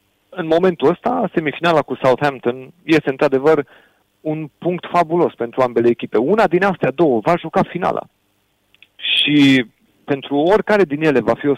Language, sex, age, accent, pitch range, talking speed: Romanian, male, 30-49, native, 115-155 Hz, 150 wpm